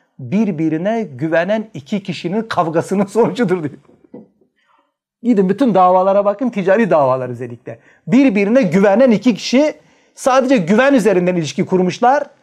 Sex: male